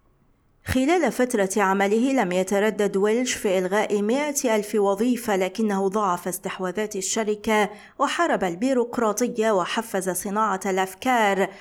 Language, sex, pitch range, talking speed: Arabic, female, 190-230 Hz, 105 wpm